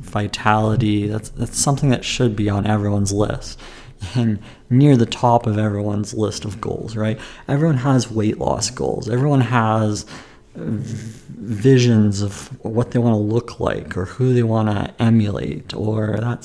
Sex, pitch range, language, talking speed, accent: male, 105-125 Hz, English, 150 wpm, American